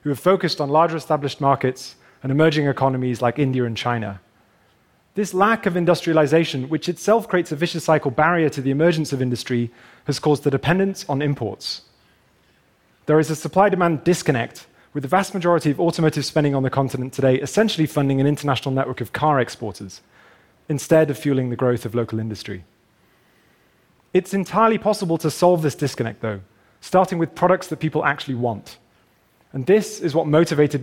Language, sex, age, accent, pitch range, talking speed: English, male, 30-49, British, 130-170 Hz, 170 wpm